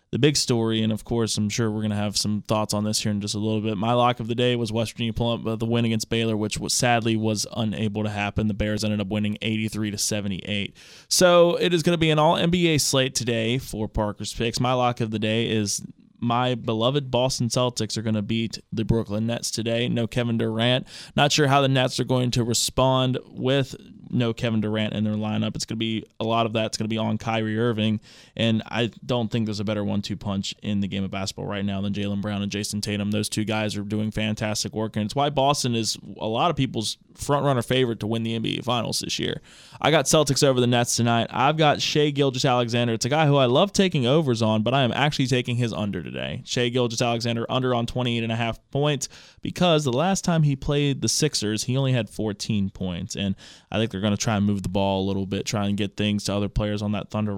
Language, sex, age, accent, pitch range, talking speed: English, male, 20-39, American, 105-125 Hz, 245 wpm